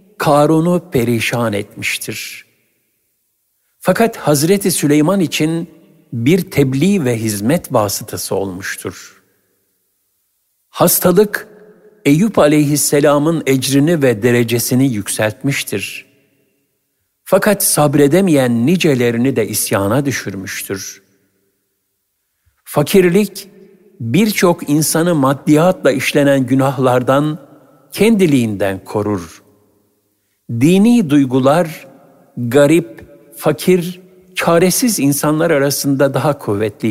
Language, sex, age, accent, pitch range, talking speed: Turkish, male, 60-79, native, 110-170 Hz, 70 wpm